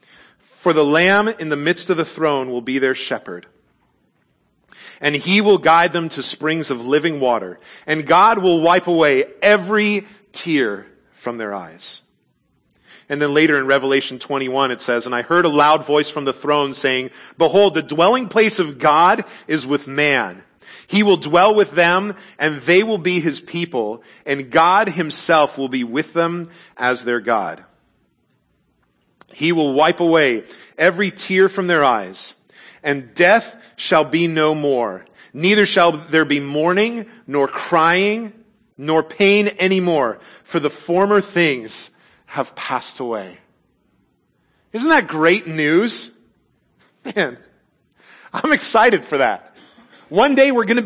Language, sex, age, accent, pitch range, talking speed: English, male, 40-59, American, 145-195 Hz, 150 wpm